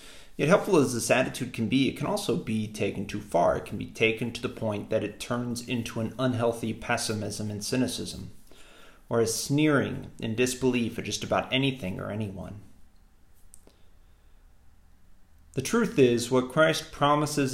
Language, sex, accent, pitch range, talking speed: English, male, American, 95-125 Hz, 160 wpm